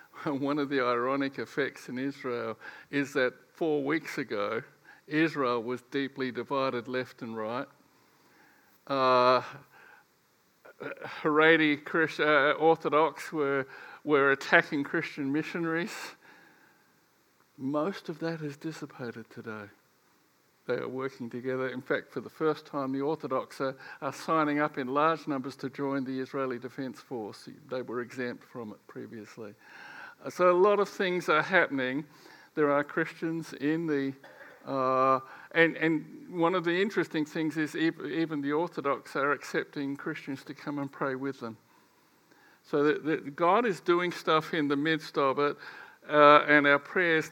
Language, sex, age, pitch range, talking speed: English, male, 60-79, 135-160 Hz, 145 wpm